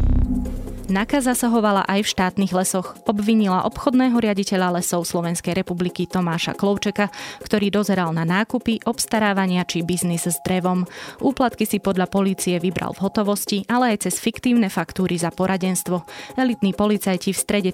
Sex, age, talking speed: female, 20-39, 140 wpm